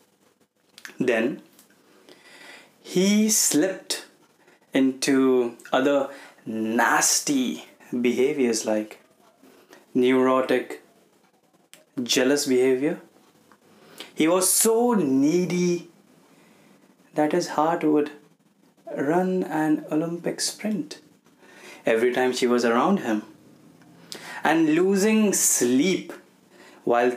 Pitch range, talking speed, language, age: 125-170 Hz, 75 wpm, Hindi, 20-39